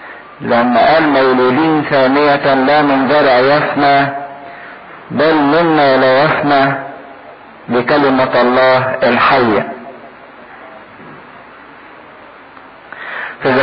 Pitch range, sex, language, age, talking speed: 135-160 Hz, male, English, 50-69, 65 wpm